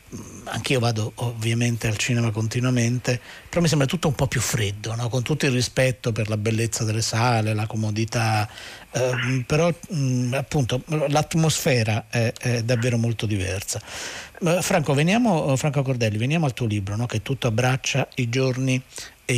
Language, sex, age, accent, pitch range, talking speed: Italian, male, 50-69, native, 115-135 Hz, 160 wpm